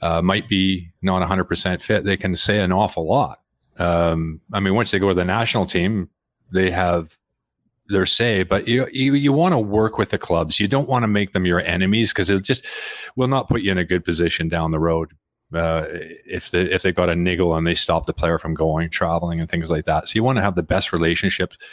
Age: 40-59